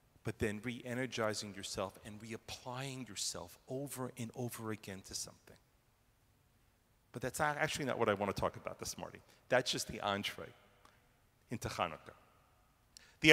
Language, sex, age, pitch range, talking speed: English, male, 40-59, 120-160 Hz, 150 wpm